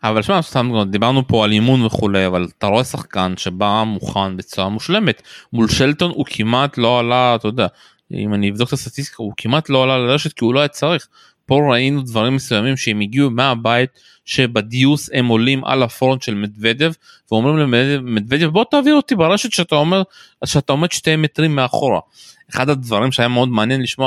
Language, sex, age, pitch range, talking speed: Hebrew, male, 20-39, 120-160 Hz, 175 wpm